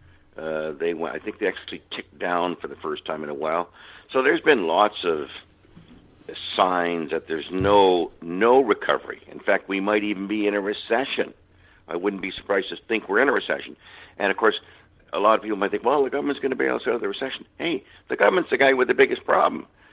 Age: 60-79